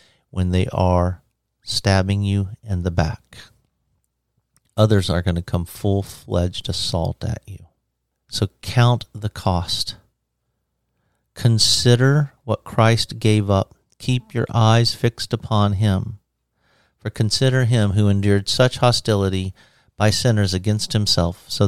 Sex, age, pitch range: male, 50-69, 95-120 Hz